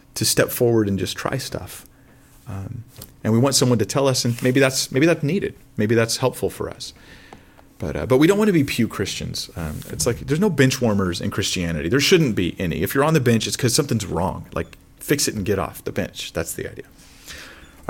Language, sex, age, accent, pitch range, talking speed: English, male, 30-49, American, 100-130 Hz, 235 wpm